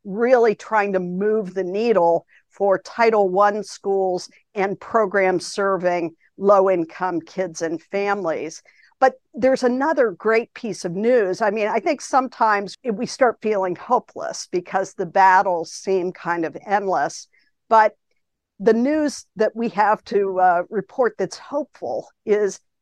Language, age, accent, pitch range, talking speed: English, 50-69, American, 185-225 Hz, 135 wpm